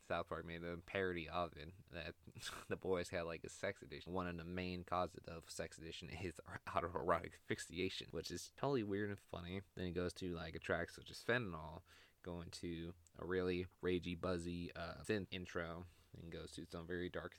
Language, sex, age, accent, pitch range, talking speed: English, male, 20-39, American, 85-95 Hz, 205 wpm